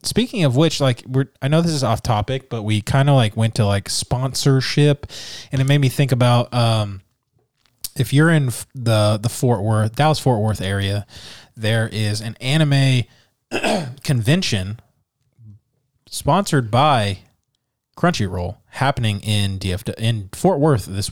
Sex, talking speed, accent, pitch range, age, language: male, 150 wpm, American, 105-130 Hz, 20-39, English